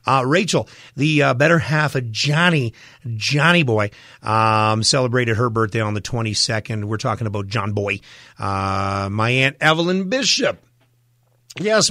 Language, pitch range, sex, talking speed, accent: English, 110-165 Hz, male, 140 wpm, American